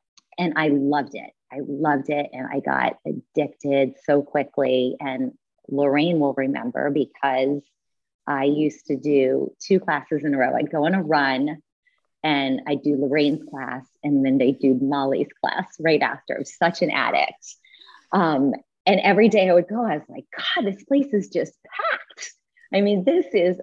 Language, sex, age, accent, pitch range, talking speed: English, female, 30-49, American, 140-195 Hz, 180 wpm